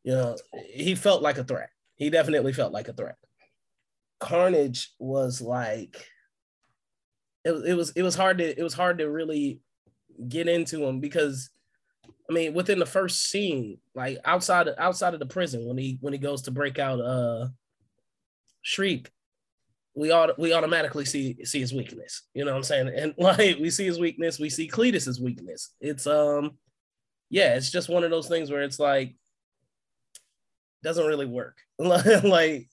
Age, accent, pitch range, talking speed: 20-39, American, 130-165 Hz, 170 wpm